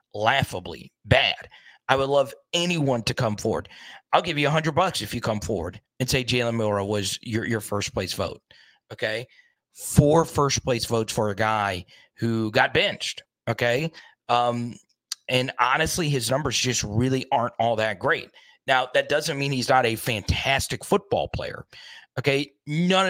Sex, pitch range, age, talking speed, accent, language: male, 105-140 Hz, 40-59, 165 wpm, American, English